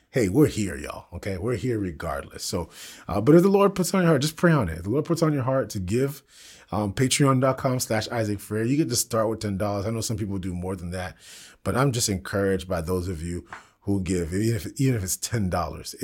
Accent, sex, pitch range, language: American, male, 95-120 Hz, English